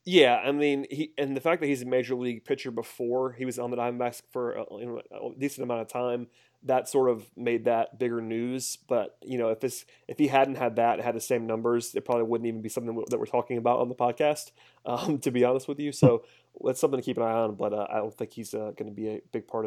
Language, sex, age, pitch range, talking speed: English, male, 30-49, 115-130 Hz, 270 wpm